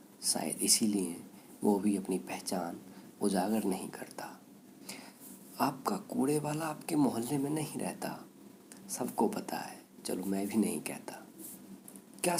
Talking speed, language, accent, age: 125 wpm, Hindi, native, 50-69